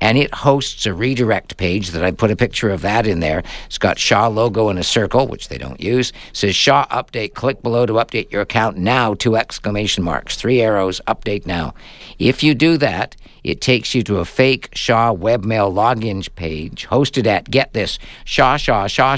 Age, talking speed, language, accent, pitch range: 50-69, 205 wpm, English, American, 100-125 Hz